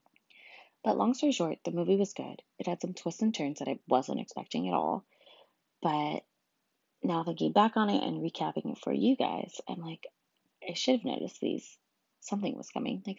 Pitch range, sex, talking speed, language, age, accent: 155-230 Hz, female, 195 wpm, English, 20-39, American